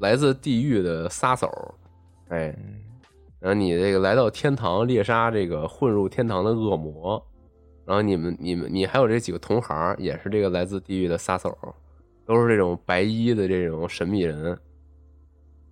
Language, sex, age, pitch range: Chinese, male, 20-39, 85-115 Hz